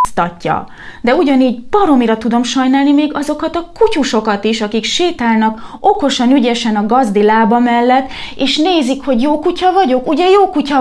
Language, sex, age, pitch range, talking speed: Hungarian, female, 20-39, 215-270 Hz, 150 wpm